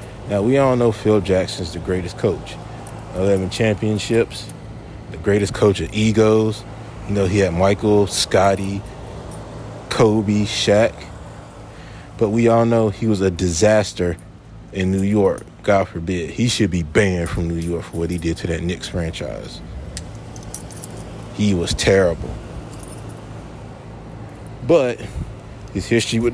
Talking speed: 135 wpm